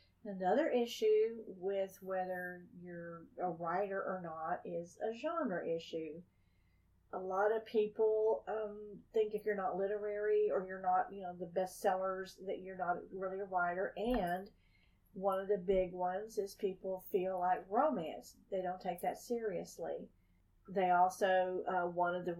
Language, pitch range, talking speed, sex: English, 180-200 Hz, 155 wpm, female